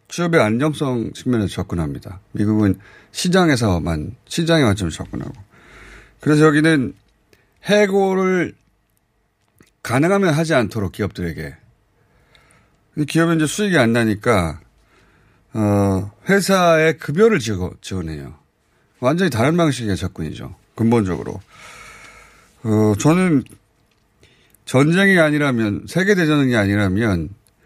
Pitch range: 100-150 Hz